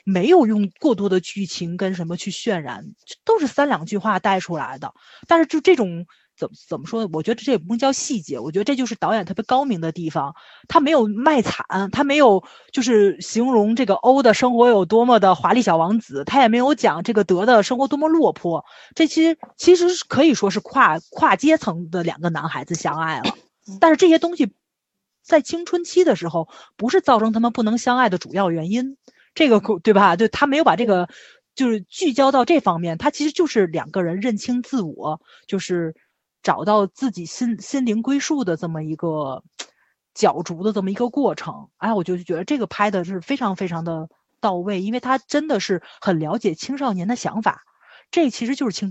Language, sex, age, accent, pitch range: Chinese, female, 30-49, native, 175-255 Hz